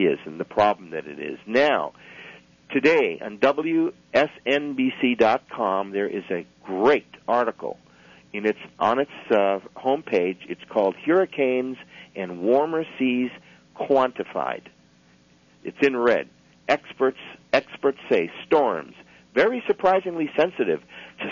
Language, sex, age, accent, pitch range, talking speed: English, male, 50-69, American, 105-145 Hz, 115 wpm